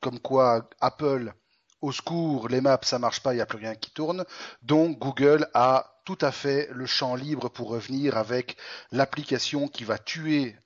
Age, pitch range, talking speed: 30-49, 120-150 Hz, 185 wpm